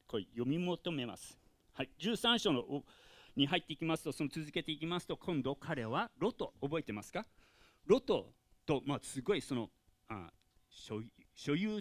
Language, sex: Japanese, male